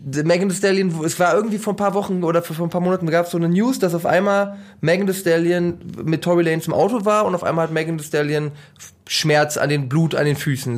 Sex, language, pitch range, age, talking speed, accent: male, German, 155-210 Hz, 20-39, 255 wpm, German